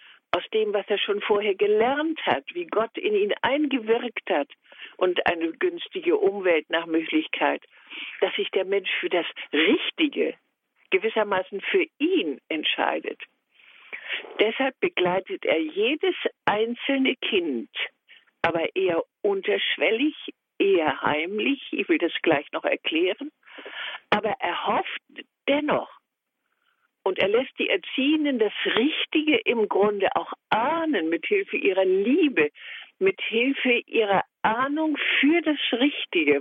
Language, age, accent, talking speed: German, 60-79, German, 120 wpm